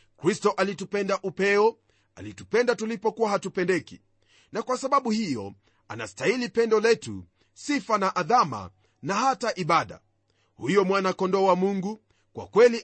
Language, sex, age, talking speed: Swahili, male, 40-59, 120 wpm